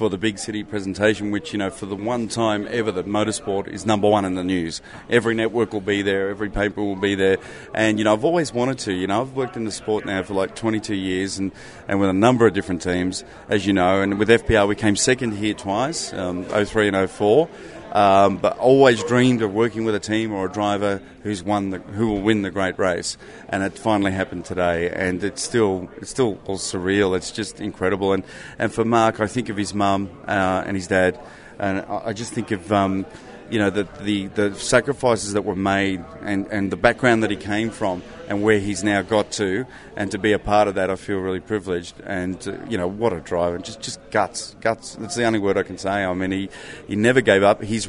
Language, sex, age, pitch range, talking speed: English, male, 30-49, 95-110 Hz, 235 wpm